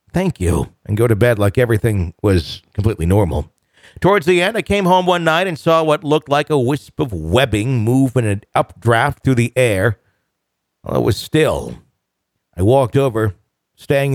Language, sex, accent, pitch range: English, male, American, 105-140 Hz